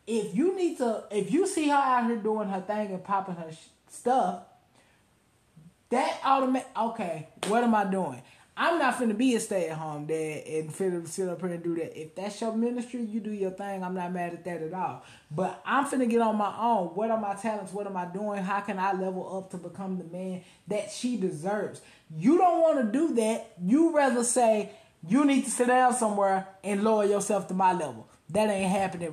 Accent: American